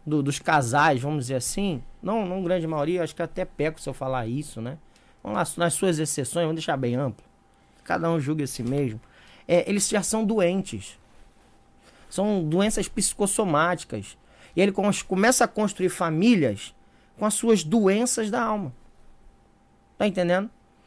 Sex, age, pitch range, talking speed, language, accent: male, 20-39, 160-235 Hz, 160 wpm, Portuguese, Brazilian